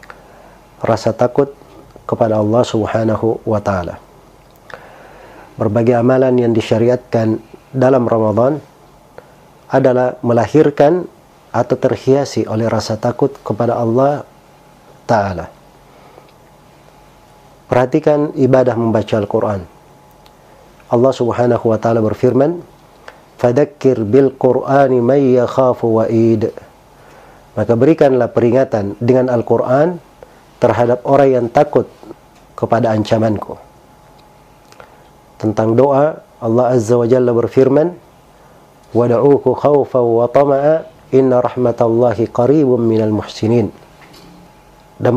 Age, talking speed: 50-69, 90 wpm